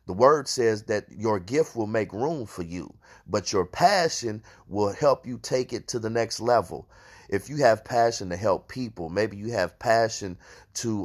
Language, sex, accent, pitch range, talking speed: English, male, American, 100-130 Hz, 190 wpm